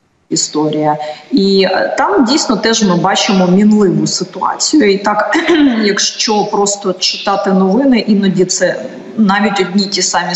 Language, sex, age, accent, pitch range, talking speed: Ukrainian, female, 30-49, native, 180-215 Hz, 120 wpm